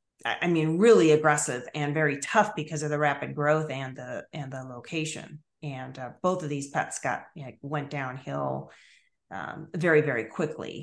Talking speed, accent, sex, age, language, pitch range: 175 wpm, American, female, 40-59, English, 145-170 Hz